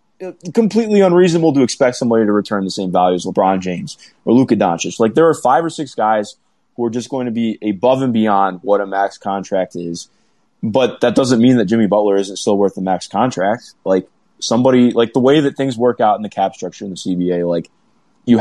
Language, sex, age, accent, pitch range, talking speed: English, male, 20-39, American, 95-130 Hz, 220 wpm